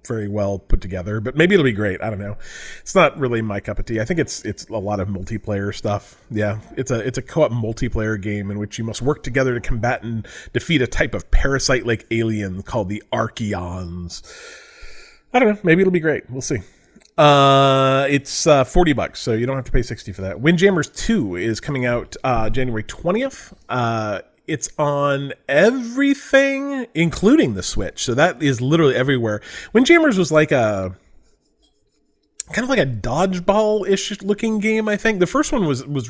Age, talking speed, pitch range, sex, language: 30-49, 195 wpm, 110-175 Hz, male, English